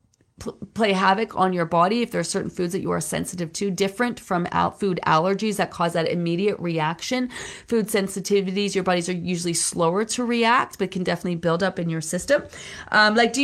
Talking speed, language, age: 200 wpm, English, 30-49